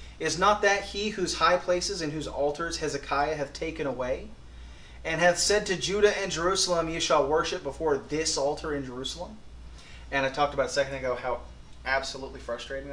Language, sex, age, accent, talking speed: English, male, 30-49, American, 180 wpm